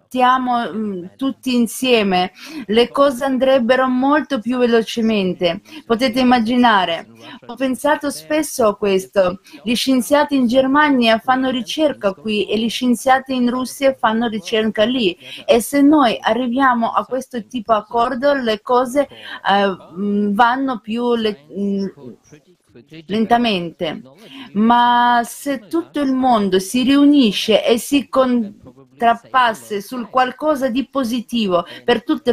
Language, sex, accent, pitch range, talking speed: Italian, female, native, 220-270 Hz, 115 wpm